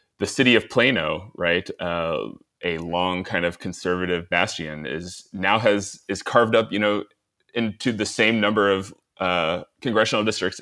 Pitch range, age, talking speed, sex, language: 90-105 Hz, 30-49, 160 wpm, male, English